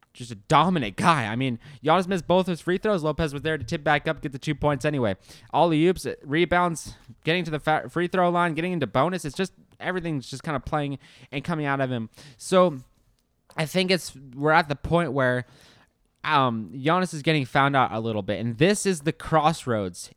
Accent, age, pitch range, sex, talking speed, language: American, 20-39, 130-165 Hz, male, 215 wpm, English